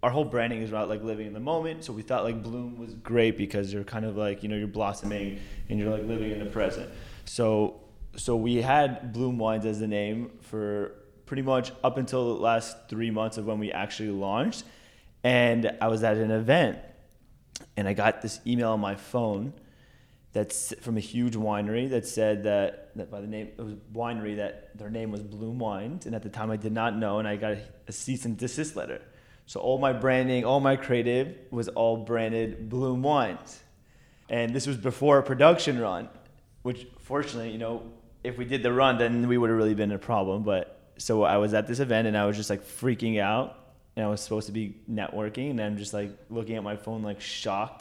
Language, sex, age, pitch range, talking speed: English, male, 20-39, 105-120 Hz, 220 wpm